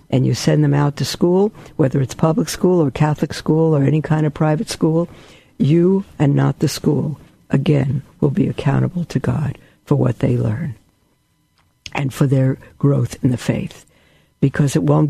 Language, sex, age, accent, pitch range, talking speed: English, female, 60-79, American, 130-160 Hz, 180 wpm